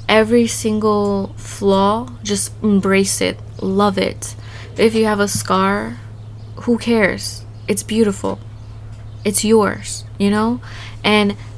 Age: 20-39